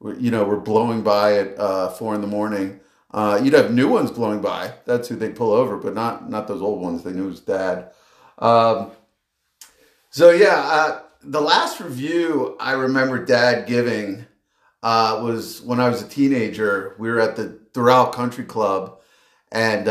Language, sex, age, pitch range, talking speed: English, male, 50-69, 105-130 Hz, 180 wpm